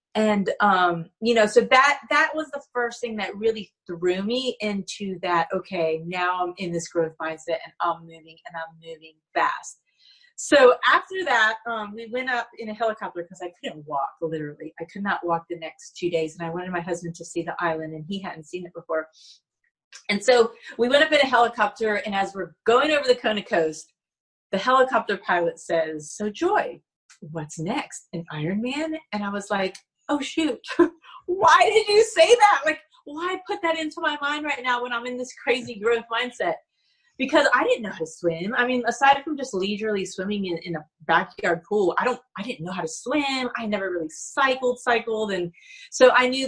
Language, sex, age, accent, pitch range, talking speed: English, female, 30-49, American, 170-250 Hz, 205 wpm